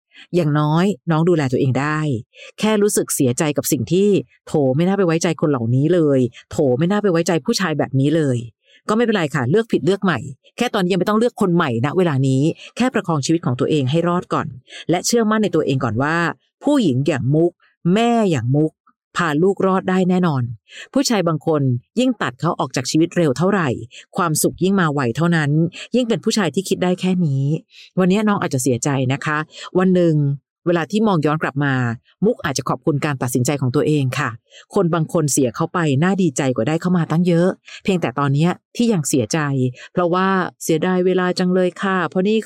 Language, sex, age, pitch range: Thai, female, 50-69, 145-185 Hz